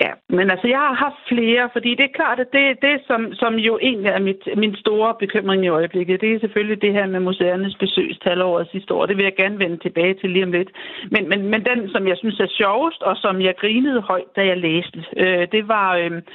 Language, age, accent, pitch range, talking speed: Danish, 60-79, native, 180-225 Hz, 240 wpm